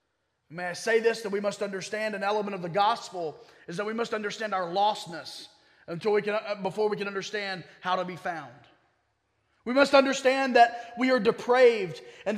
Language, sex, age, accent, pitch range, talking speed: English, male, 30-49, American, 215-260 Hz, 190 wpm